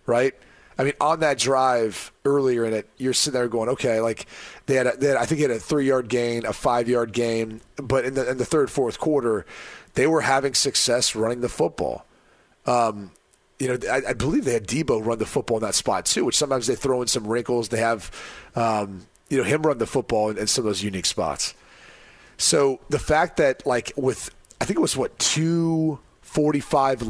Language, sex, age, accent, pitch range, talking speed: English, male, 30-49, American, 115-145 Hz, 215 wpm